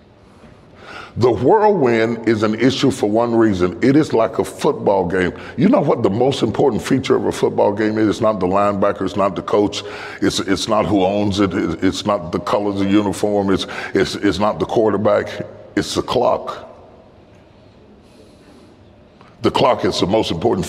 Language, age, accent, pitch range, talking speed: English, 40-59, American, 95-115 Hz, 175 wpm